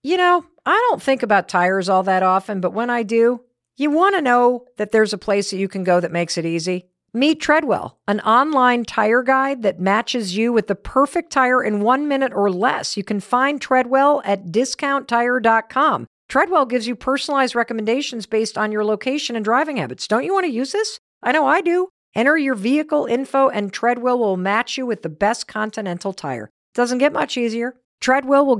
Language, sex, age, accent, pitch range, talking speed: English, female, 50-69, American, 190-265 Hz, 200 wpm